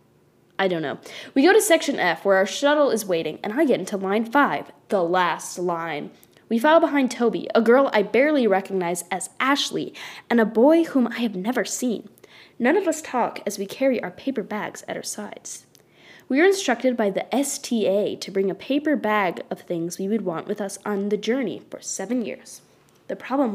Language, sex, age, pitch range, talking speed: English, female, 10-29, 190-275 Hz, 205 wpm